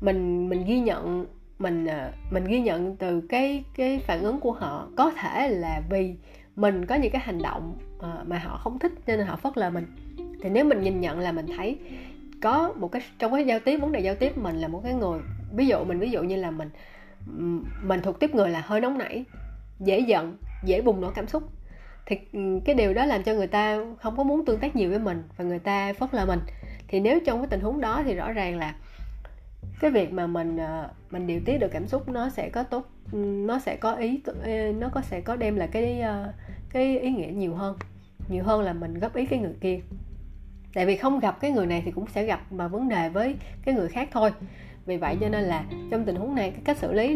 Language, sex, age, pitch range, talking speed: Vietnamese, female, 20-39, 175-245 Hz, 235 wpm